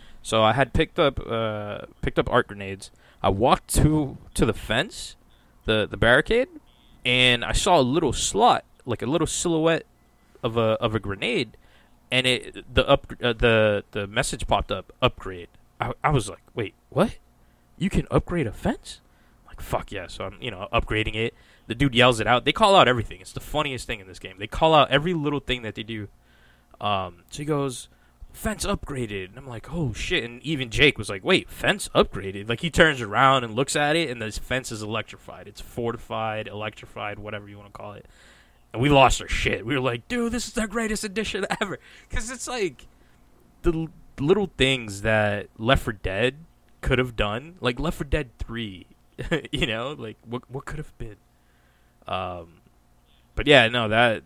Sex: male